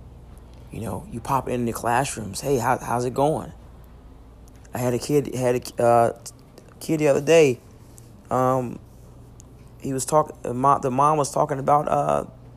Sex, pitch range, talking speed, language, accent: male, 115-135 Hz, 160 wpm, English, American